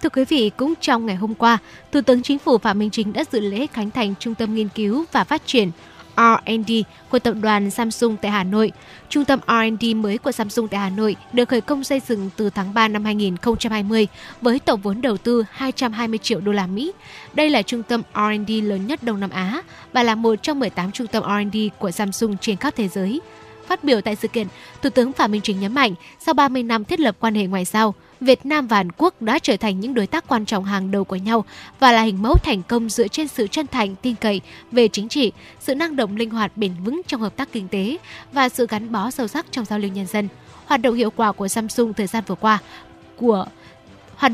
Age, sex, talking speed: 10-29, female, 240 wpm